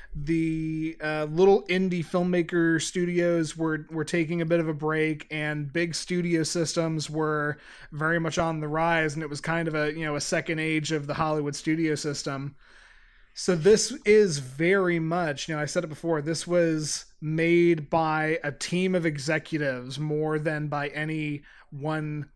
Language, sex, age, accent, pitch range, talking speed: English, male, 20-39, American, 150-170 Hz, 170 wpm